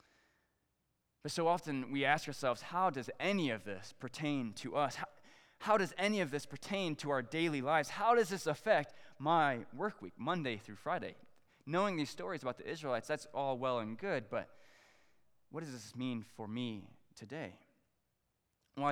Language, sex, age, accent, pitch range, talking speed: English, male, 20-39, American, 115-165 Hz, 175 wpm